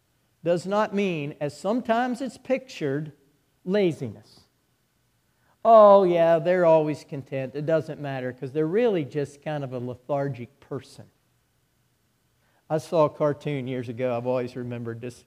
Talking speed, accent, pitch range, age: 140 wpm, American, 130-145 Hz, 50-69